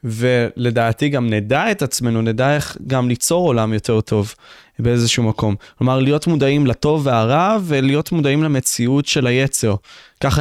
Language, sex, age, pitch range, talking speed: Hebrew, male, 20-39, 120-165 Hz, 145 wpm